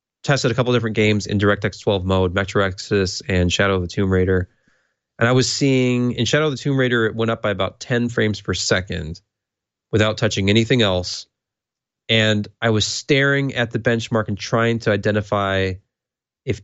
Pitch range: 100-120 Hz